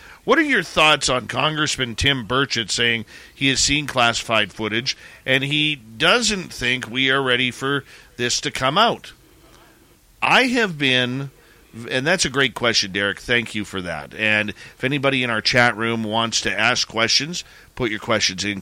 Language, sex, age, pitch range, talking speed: English, male, 40-59, 105-140 Hz, 175 wpm